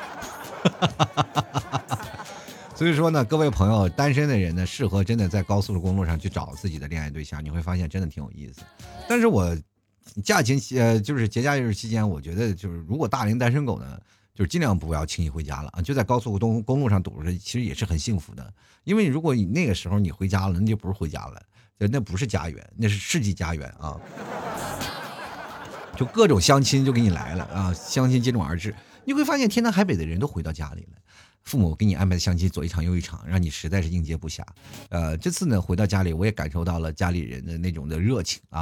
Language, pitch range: Chinese, 85-110 Hz